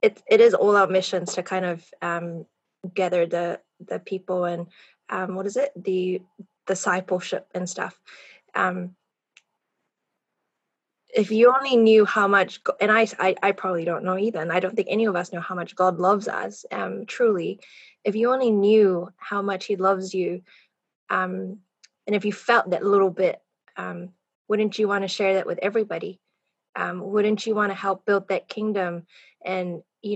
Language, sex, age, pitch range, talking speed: English, female, 20-39, 180-210 Hz, 180 wpm